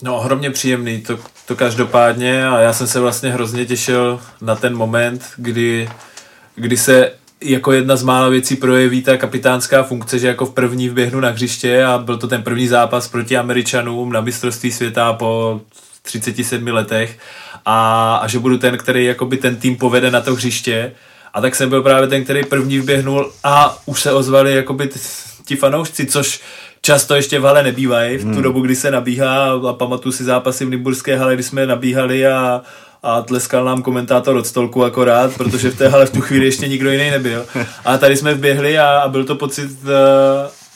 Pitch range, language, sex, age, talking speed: 125-135 Hz, Czech, male, 20-39, 190 wpm